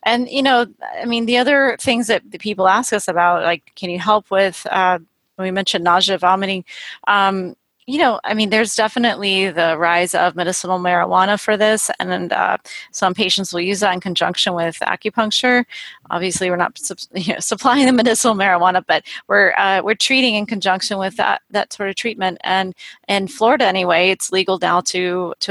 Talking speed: 195 wpm